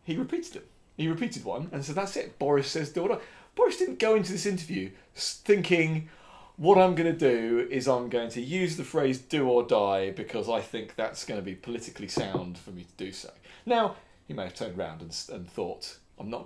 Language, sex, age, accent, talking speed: English, male, 30-49, British, 225 wpm